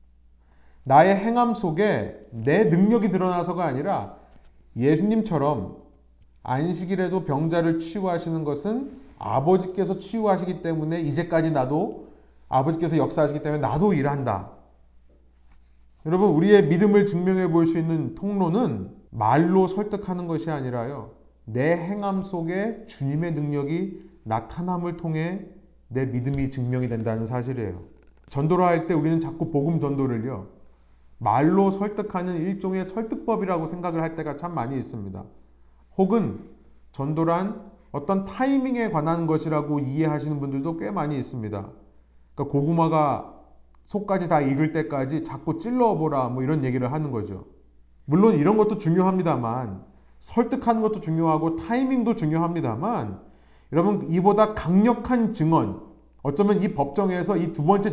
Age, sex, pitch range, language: 30-49, male, 125-190 Hz, Korean